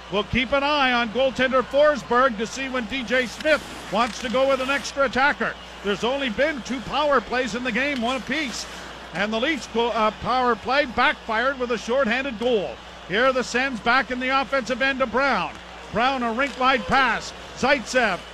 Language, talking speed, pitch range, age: English, 185 wpm, 230-265 Hz, 50-69